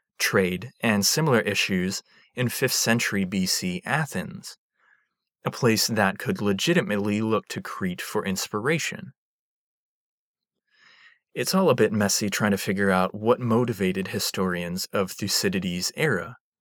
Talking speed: 125 wpm